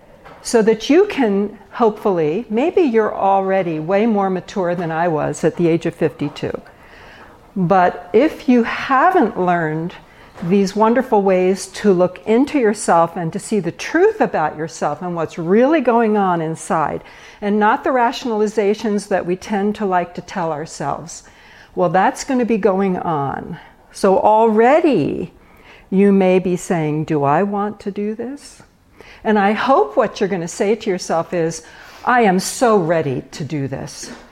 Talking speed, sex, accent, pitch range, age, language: 165 wpm, female, American, 180-225 Hz, 60-79, English